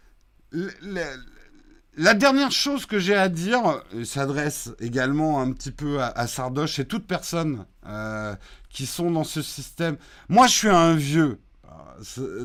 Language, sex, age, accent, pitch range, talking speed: French, male, 50-69, French, 125-190 Hz, 155 wpm